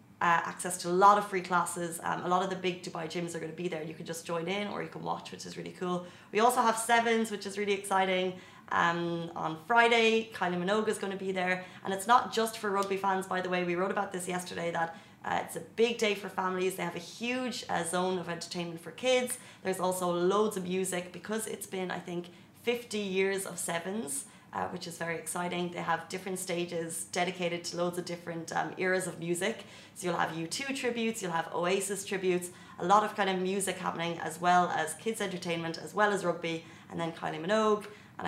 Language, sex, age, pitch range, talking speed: Arabic, female, 20-39, 170-200 Hz, 230 wpm